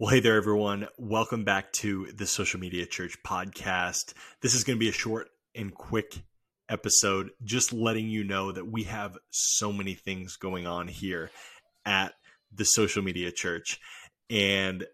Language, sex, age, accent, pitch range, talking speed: English, male, 20-39, American, 95-110 Hz, 165 wpm